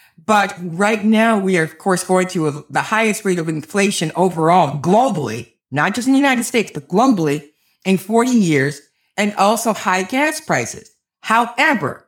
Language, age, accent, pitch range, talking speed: English, 50-69, American, 160-215 Hz, 165 wpm